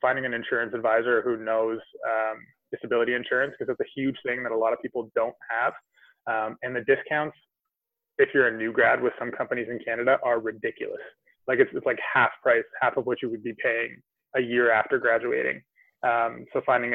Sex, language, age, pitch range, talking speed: male, English, 20-39, 120-135 Hz, 200 wpm